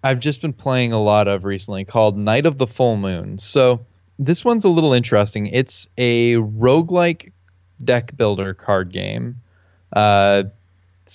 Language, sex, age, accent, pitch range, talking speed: English, male, 20-39, American, 100-120 Hz, 150 wpm